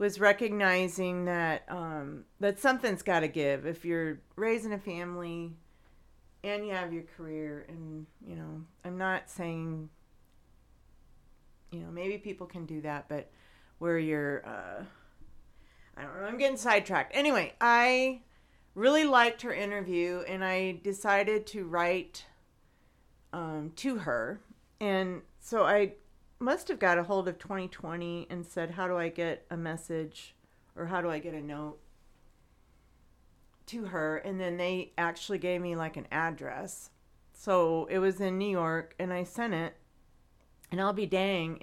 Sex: female